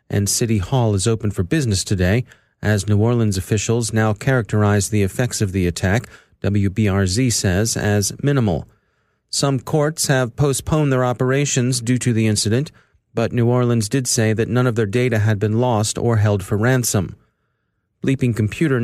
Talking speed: 165 wpm